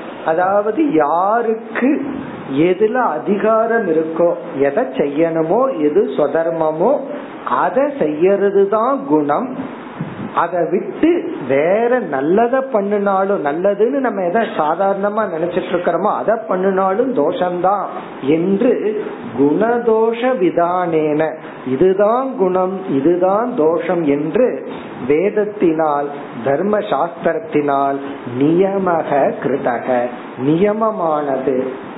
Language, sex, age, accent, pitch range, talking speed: Tamil, male, 50-69, native, 155-225 Hz, 50 wpm